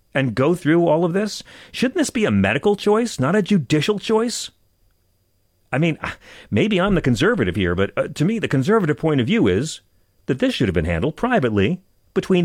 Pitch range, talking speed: 105-160 Hz, 200 wpm